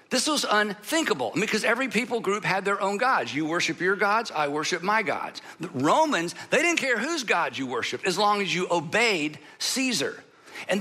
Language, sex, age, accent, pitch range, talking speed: English, male, 50-69, American, 180-240 Hz, 195 wpm